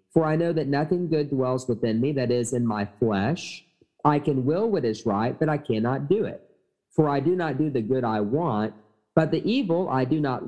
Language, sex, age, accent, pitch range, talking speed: English, male, 40-59, American, 120-165 Hz, 230 wpm